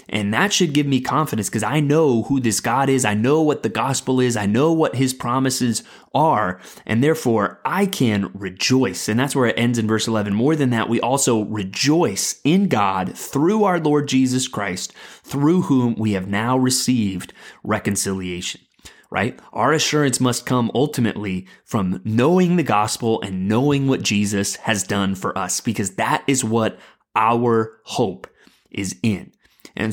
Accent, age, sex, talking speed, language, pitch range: American, 20-39, male, 170 wpm, English, 110-145 Hz